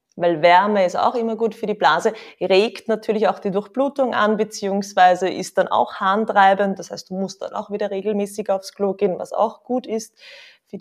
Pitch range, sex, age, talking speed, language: 185-225 Hz, female, 20-39, 200 wpm, German